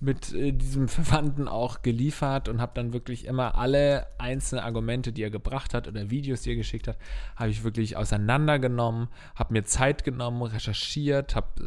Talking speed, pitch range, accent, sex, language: 170 wpm, 110-130 Hz, German, male, German